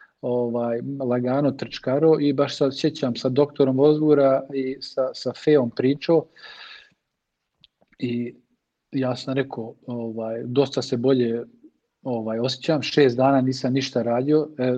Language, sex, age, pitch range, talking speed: English, male, 40-59, 120-140 Hz, 125 wpm